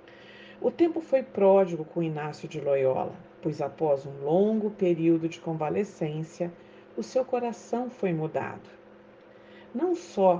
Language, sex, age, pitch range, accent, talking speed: Portuguese, female, 50-69, 165-200 Hz, Brazilian, 125 wpm